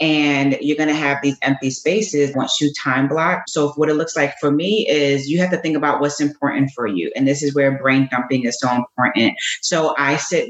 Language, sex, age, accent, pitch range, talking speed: English, female, 30-49, American, 135-155 Hz, 235 wpm